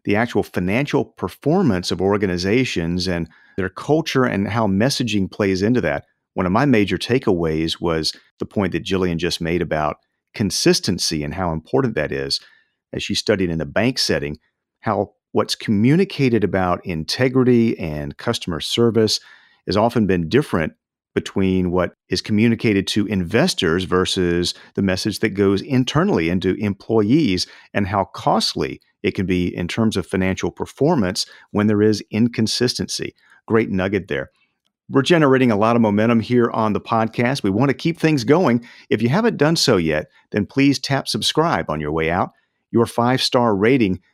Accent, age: American, 40-59